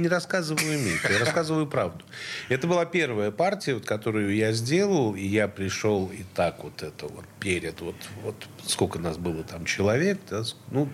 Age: 40-59